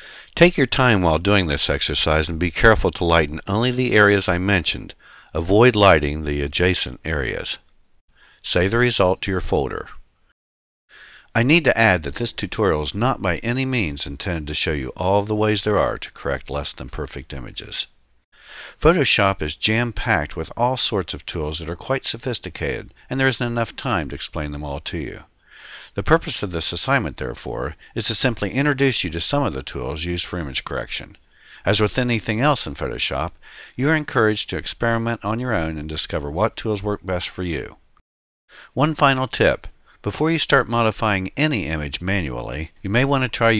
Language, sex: English, male